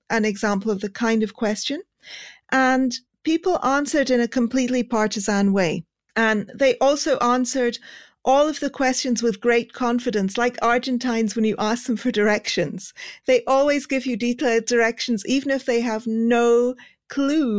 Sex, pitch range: female, 225-265 Hz